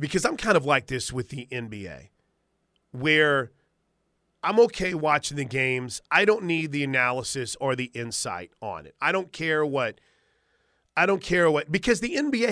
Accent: American